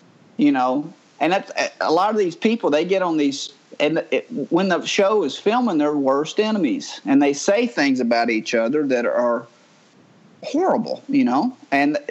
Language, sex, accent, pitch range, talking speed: English, male, American, 150-230 Hz, 180 wpm